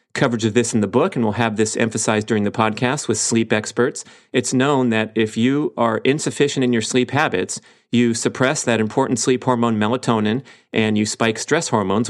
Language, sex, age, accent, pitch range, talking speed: English, male, 40-59, American, 110-125 Hz, 200 wpm